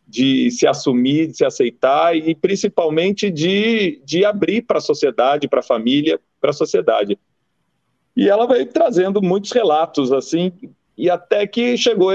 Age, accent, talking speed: 40-59, Brazilian, 155 wpm